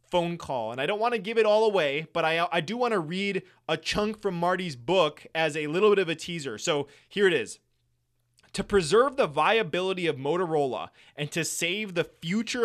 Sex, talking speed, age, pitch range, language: male, 215 wpm, 20-39, 155-195 Hz, English